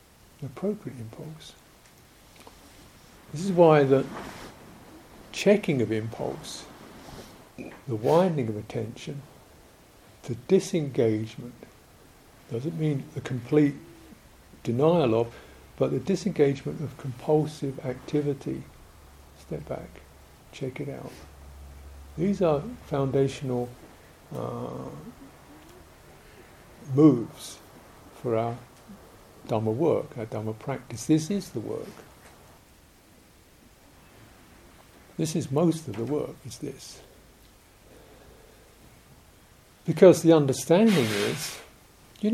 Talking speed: 85 wpm